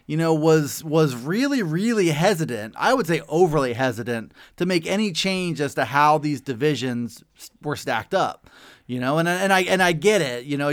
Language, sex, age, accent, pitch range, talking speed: English, male, 30-49, American, 140-175 Hz, 195 wpm